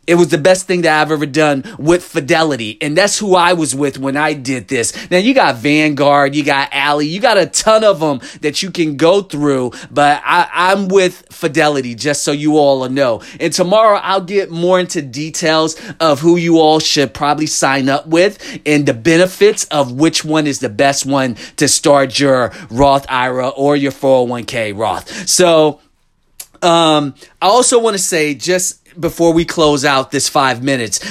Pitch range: 140-175 Hz